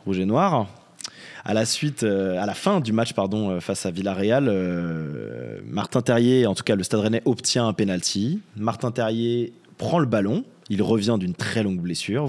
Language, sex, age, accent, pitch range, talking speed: French, male, 20-39, French, 100-125 Hz, 195 wpm